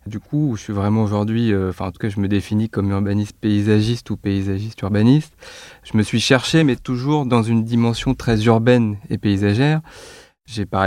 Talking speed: 190 wpm